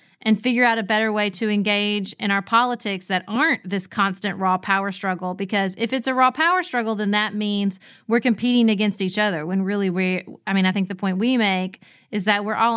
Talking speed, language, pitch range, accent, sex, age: 220 wpm, English, 185-220 Hz, American, female, 30-49